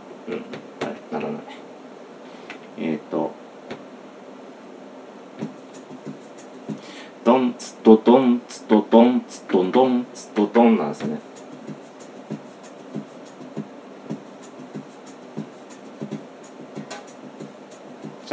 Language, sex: Japanese, male